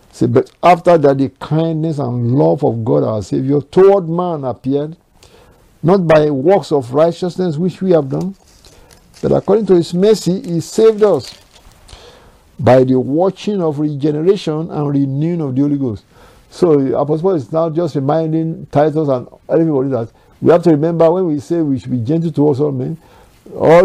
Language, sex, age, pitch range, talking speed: English, male, 60-79, 135-170 Hz, 175 wpm